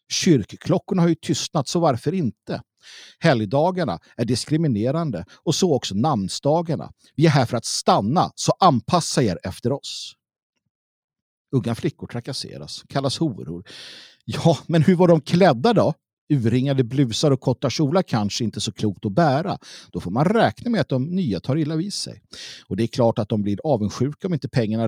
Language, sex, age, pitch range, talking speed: Swedish, male, 50-69, 115-160 Hz, 170 wpm